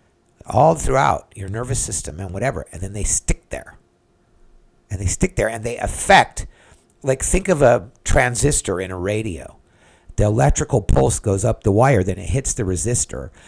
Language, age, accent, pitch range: English, 50-69, American, 95-125 Hz